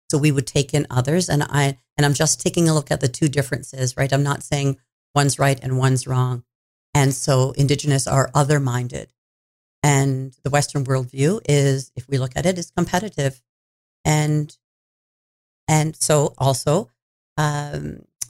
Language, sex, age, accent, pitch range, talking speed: English, female, 40-59, American, 130-150 Hz, 165 wpm